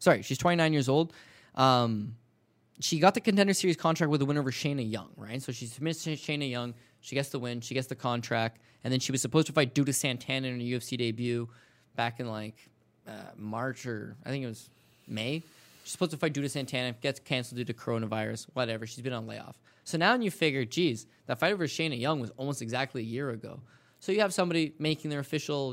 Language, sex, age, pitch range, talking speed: English, male, 10-29, 120-155 Hz, 220 wpm